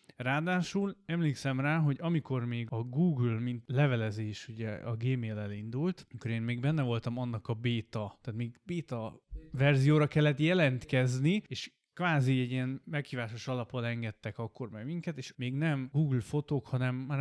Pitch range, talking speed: 115-145 Hz, 155 wpm